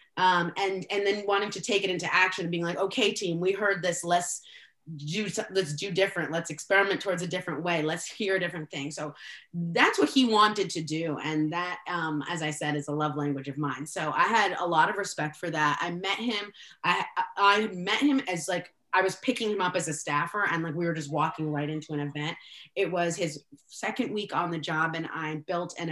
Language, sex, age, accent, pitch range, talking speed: English, female, 20-39, American, 160-195 Hz, 235 wpm